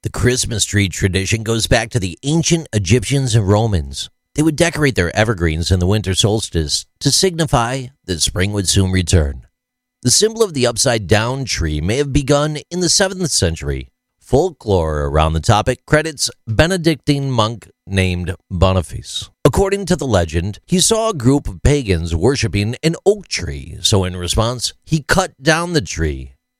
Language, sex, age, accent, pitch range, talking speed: English, male, 40-59, American, 90-140 Hz, 160 wpm